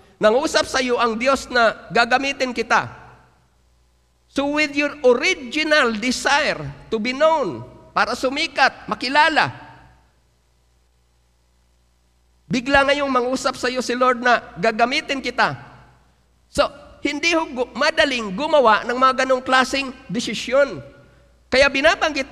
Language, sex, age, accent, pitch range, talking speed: Filipino, male, 50-69, native, 190-270 Hz, 110 wpm